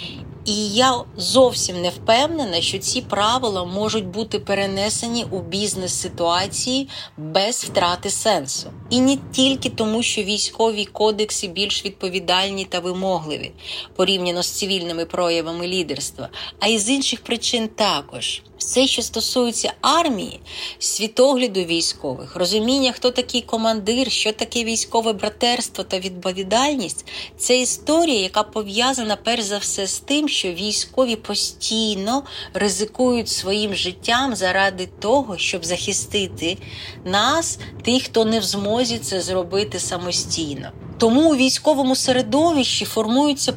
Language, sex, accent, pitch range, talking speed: Ukrainian, female, native, 185-245 Hz, 120 wpm